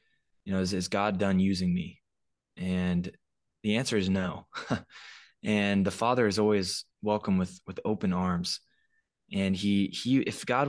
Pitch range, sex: 95-110 Hz, male